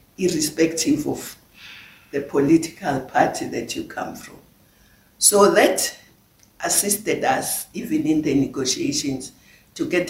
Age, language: 60-79, English